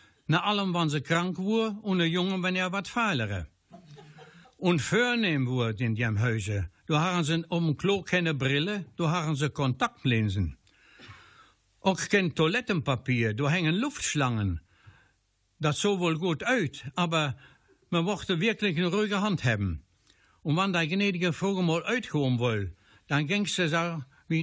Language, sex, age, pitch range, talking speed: German, male, 60-79, 140-180 Hz, 150 wpm